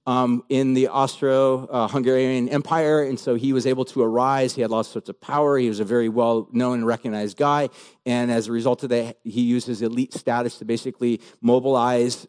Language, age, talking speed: English, 40-59, 195 wpm